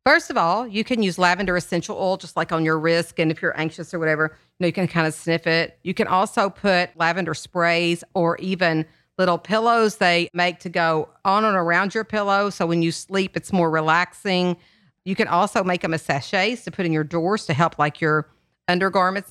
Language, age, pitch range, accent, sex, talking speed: English, 50-69, 170-210 Hz, American, female, 220 wpm